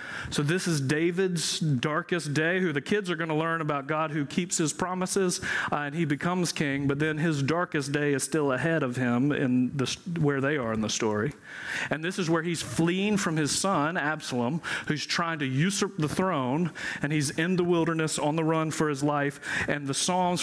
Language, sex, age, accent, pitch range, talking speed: English, male, 40-59, American, 135-165 Hz, 215 wpm